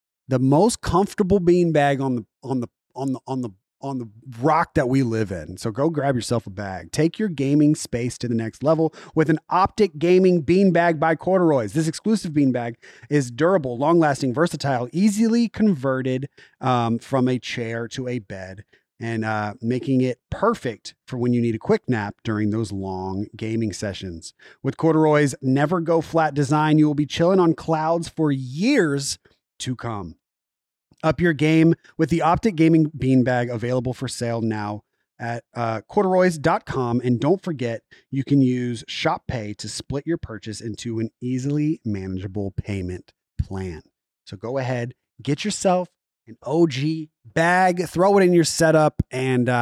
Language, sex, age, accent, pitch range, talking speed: English, male, 30-49, American, 115-160 Hz, 165 wpm